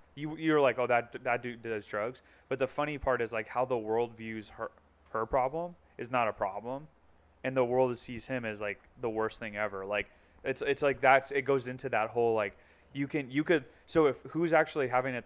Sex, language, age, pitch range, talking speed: male, English, 20-39, 110-130 Hz, 230 wpm